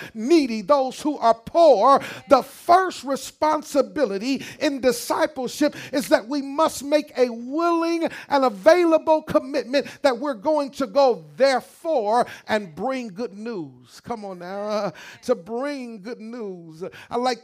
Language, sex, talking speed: English, male, 140 wpm